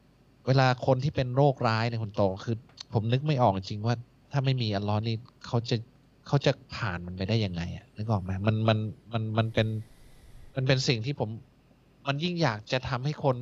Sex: male